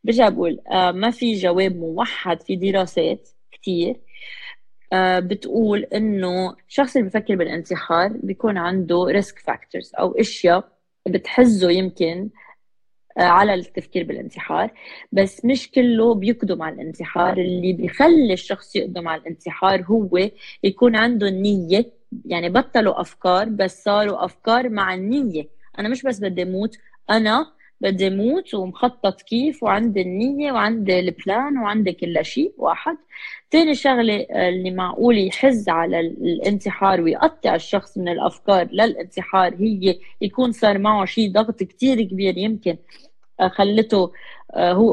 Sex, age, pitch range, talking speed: female, 20-39, 180-230 Hz, 125 wpm